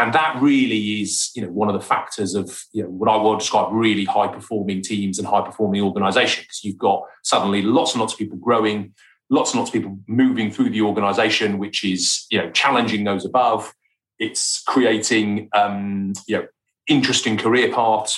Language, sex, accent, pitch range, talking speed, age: English, male, British, 100-115 Hz, 185 wpm, 30-49